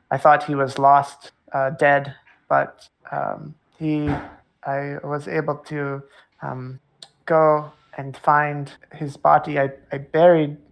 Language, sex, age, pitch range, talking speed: English, male, 20-39, 140-155 Hz, 130 wpm